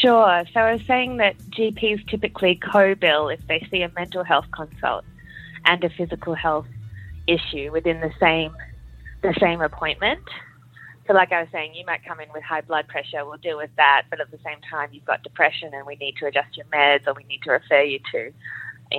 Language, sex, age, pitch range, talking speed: English, female, 20-39, 140-180 Hz, 210 wpm